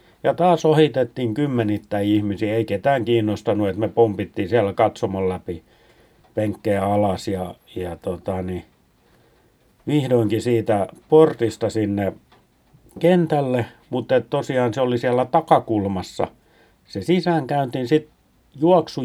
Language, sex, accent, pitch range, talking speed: Finnish, male, native, 100-130 Hz, 110 wpm